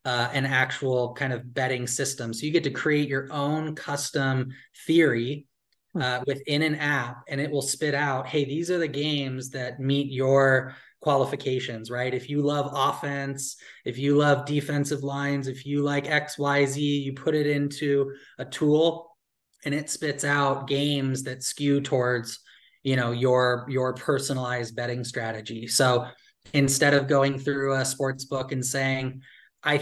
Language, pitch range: English, 125-145 Hz